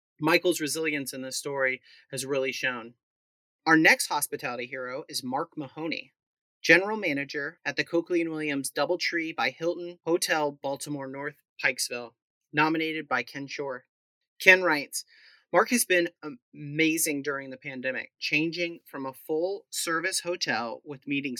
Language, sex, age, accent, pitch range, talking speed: English, male, 30-49, American, 135-175 Hz, 135 wpm